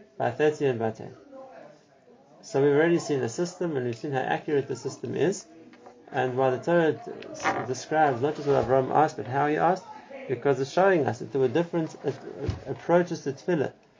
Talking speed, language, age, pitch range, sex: 205 wpm, English, 30-49, 125-155 Hz, male